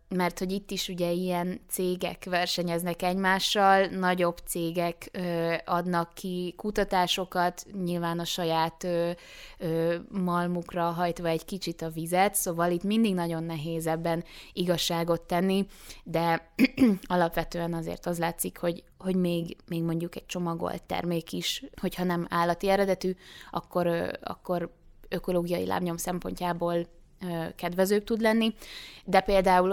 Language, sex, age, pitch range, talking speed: Hungarian, female, 20-39, 170-185 Hz, 120 wpm